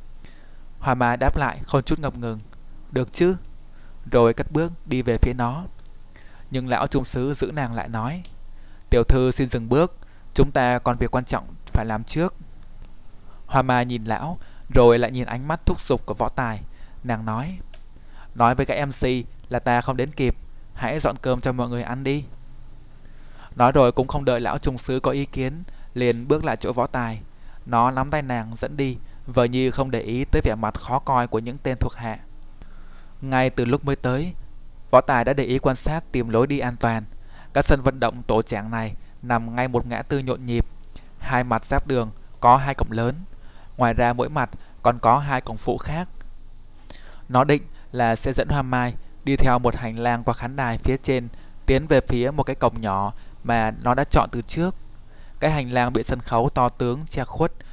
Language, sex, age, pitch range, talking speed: Vietnamese, male, 20-39, 115-135 Hz, 205 wpm